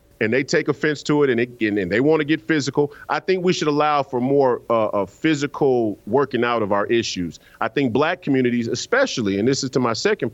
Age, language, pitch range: 40-59, English, 105-155 Hz